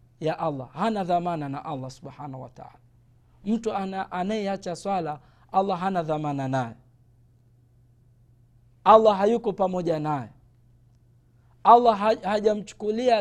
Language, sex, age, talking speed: Swahili, male, 50-69, 105 wpm